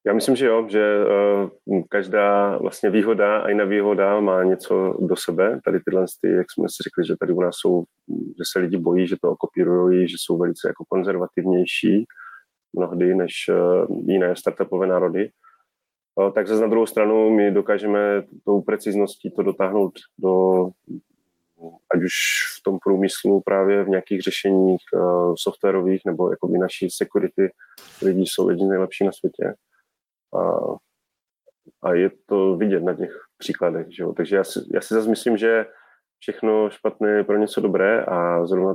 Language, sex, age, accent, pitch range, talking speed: Czech, male, 30-49, native, 90-105 Hz, 160 wpm